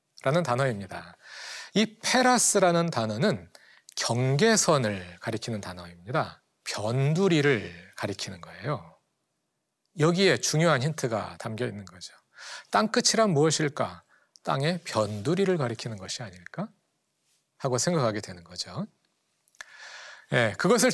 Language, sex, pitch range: Korean, male, 115-180 Hz